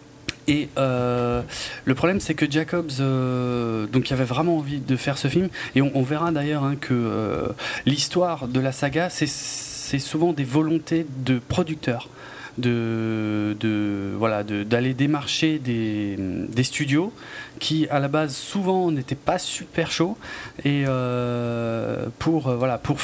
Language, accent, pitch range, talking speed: French, French, 120-155 Hz, 155 wpm